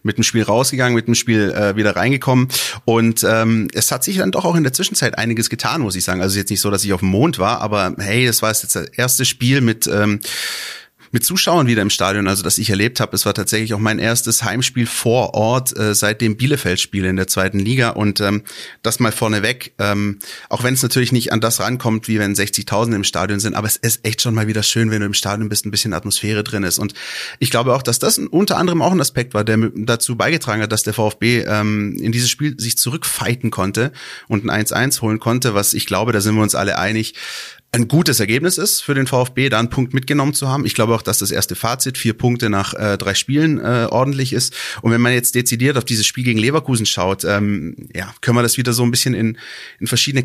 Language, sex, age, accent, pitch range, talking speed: German, male, 30-49, German, 105-125 Hz, 245 wpm